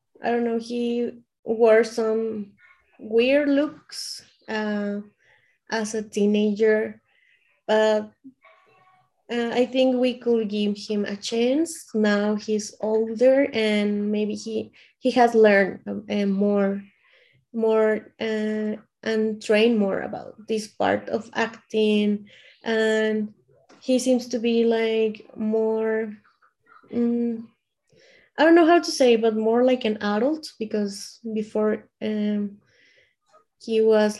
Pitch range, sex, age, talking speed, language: 210-235 Hz, female, 20-39, 120 wpm, English